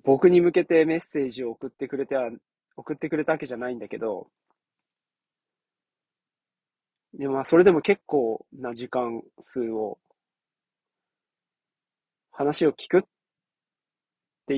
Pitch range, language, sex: 120-155 Hz, Japanese, male